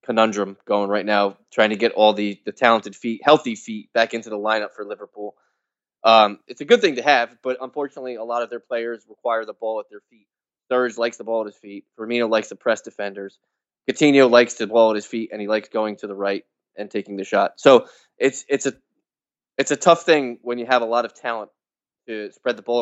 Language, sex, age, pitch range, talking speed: English, male, 20-39, 105-120 Hz, 235 wpm